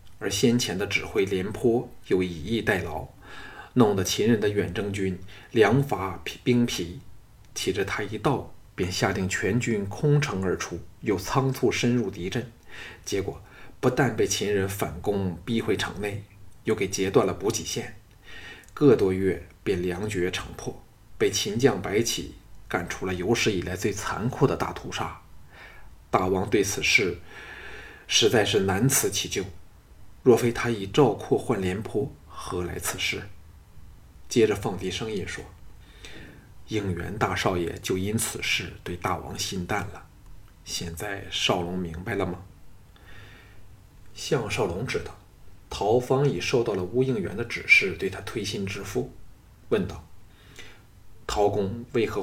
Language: Chinese